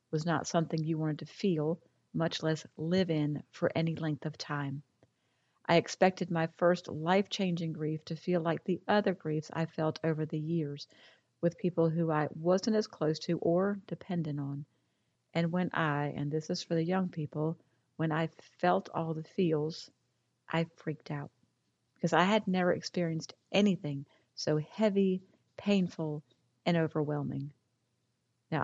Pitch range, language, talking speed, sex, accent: 150-175 Hz, English, 155 wpm, female, American